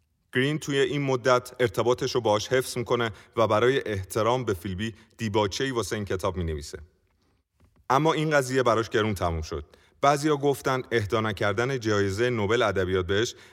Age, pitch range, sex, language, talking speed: 30-49, 100-120 Hz, male, Persian, 150 wpm